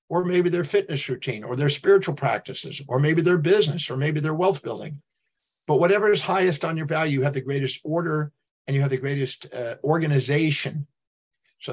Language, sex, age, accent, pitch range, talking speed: English, male, 50-69, American, 135-175 Hz, 195 wpm